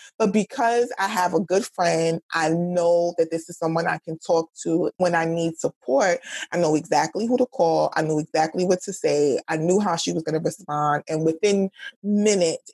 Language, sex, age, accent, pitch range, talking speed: English, female, 20-39, American, 165-205 Hz, 205 wpm